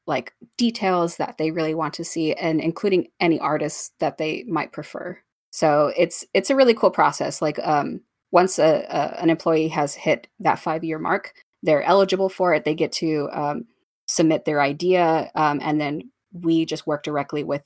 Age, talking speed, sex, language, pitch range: 20-39, 185 wpm, female, English, 155-180 Hz